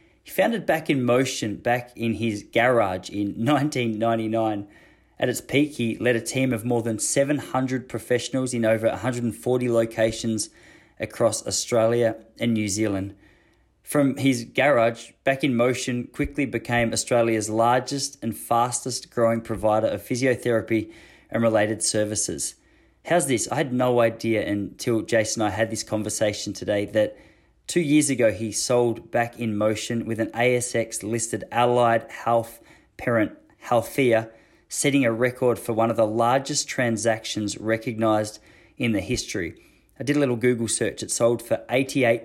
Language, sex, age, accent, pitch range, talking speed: English, male, 20-39, Australian, 110-125 Hz, 150 wpm